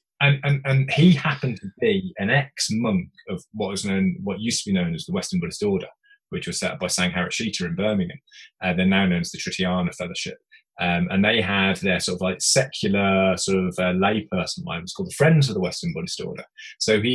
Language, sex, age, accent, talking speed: English, male, 20-39, British, 220 wpm